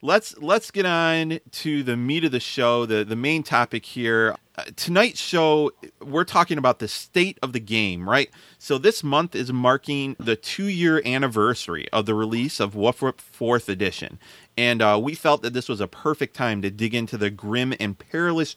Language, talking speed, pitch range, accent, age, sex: English, 195 wpm, 110-150 Hz, American, 30-49, male